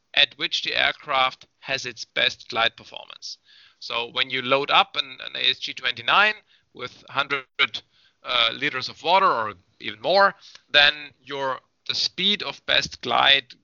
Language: English